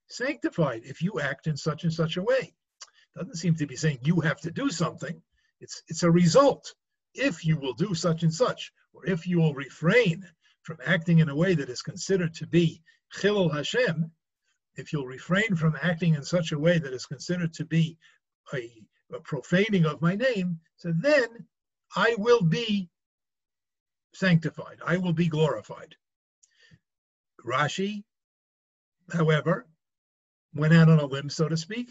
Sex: male